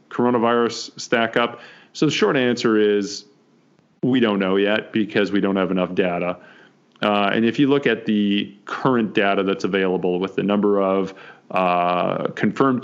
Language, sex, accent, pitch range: English, male, American, 95-110 Hz